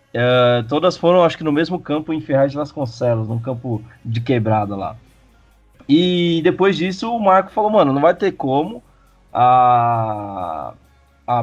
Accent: Brazilian